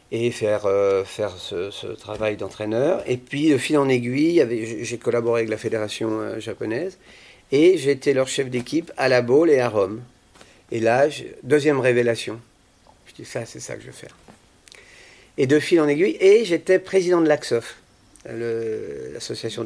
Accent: French